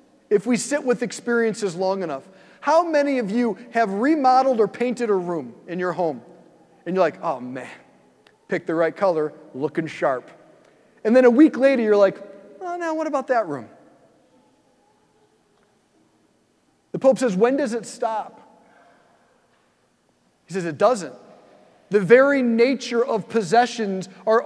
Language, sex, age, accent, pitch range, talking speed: English, male, 40-59, American, 200-255 Hz, 150 wpm